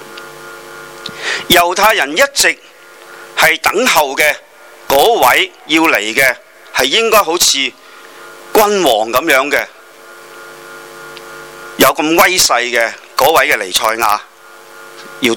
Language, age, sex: Chinese, 40-59, male